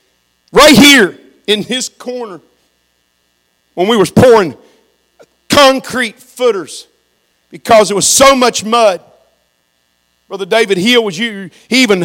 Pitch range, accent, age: 175-270 Hz, American, 50-69